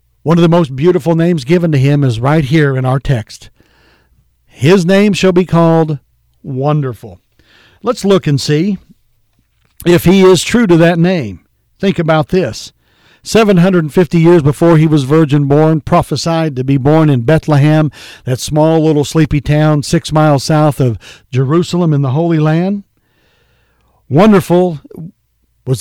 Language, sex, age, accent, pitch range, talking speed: English, male, 60-79, American, 130-170 Hz, 150 wpm